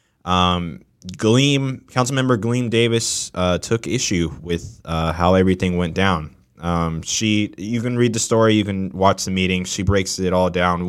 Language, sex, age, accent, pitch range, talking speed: English, male, 20-39, American, 90-110 Hz, 175 wpm